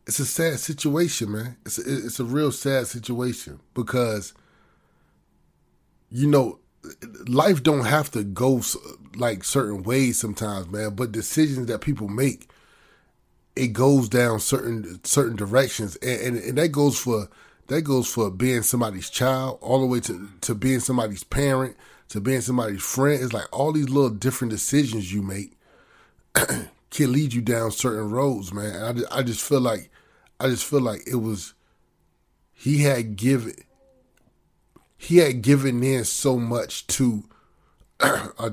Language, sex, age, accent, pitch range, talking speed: English, male, 30-49, American, 110-135 Hz, 155 wpm